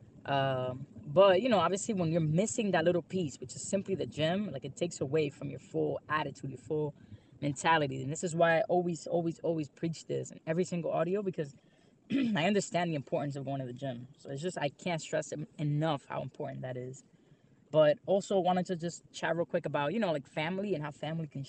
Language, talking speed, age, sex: English, 220 wpm, 10-29, female